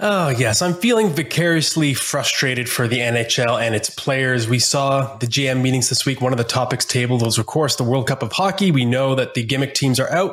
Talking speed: 230 wpm